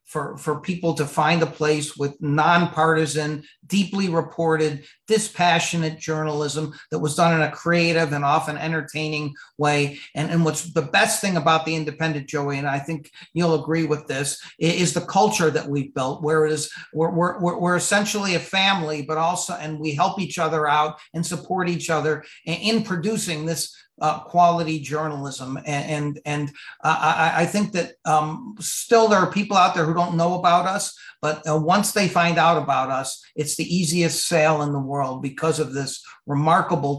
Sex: male